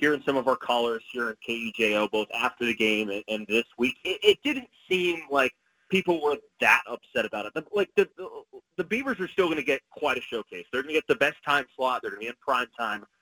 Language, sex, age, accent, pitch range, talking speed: English, male, 30-49, American, 115-185 Hz, 240 wpm